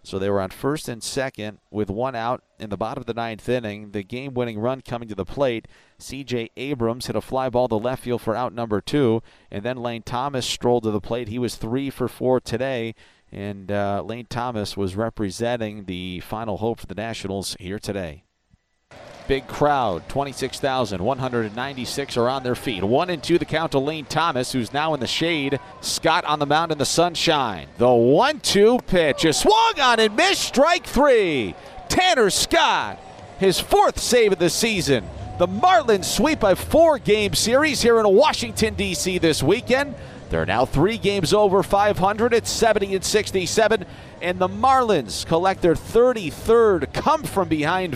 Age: 40-59